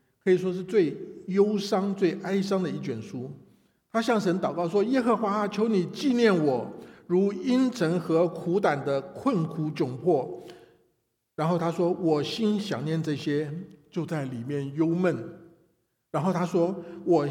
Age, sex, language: 60-79, male, Chinese